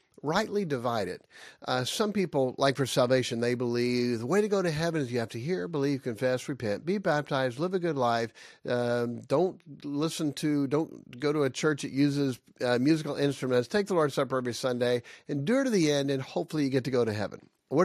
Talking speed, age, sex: 210 wpm, 50-69, male